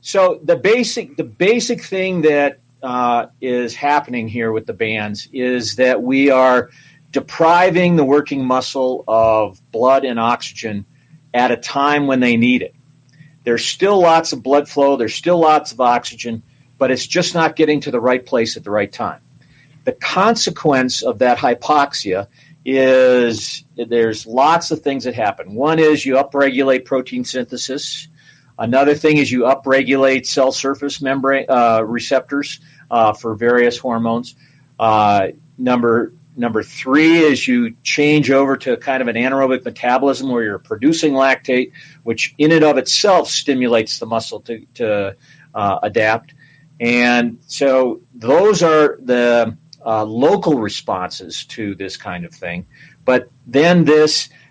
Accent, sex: American, male